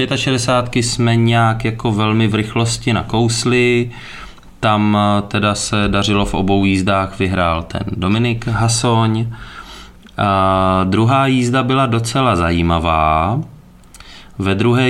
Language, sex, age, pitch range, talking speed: Czech, male, 20-39, 95-115 Hz, 105 wpm